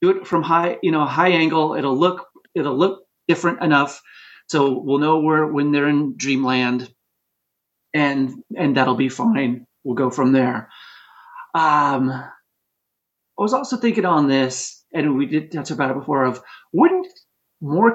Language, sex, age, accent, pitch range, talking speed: English, male, 30-49, American, 135-185 Hz, 160 wpm